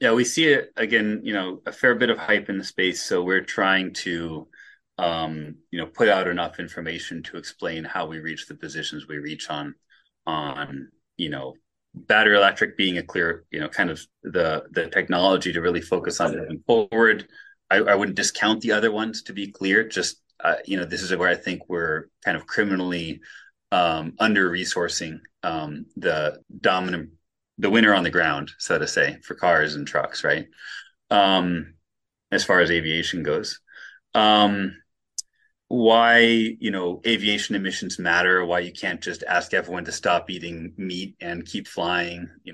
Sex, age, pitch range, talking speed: male, 30-49, 85-105 Hz, 175 wpm